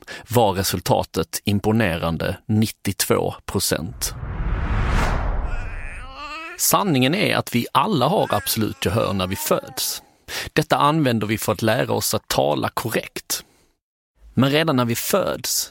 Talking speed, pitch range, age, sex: 115 wpm, 105-145 Hz, 30-49, male